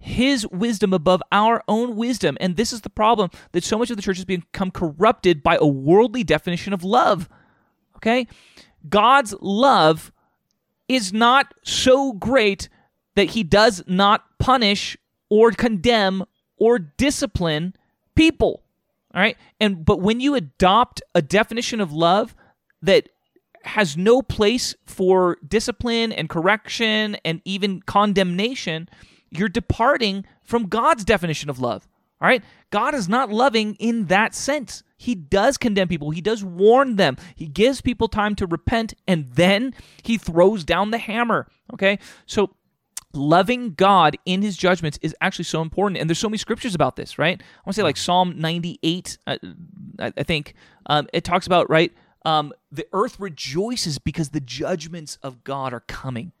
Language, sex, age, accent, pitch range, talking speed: English, male, 30-49, American, 175-230 Hz, 155 wpm